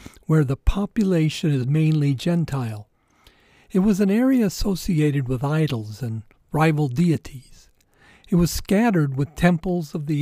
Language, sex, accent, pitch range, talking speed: English, male, American, 140-185 Hz, 135 wpm